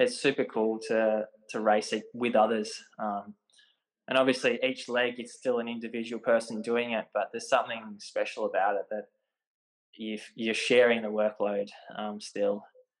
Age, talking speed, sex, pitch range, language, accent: 20-39, 160 wpm, male, 105-115 Hz, English, Australian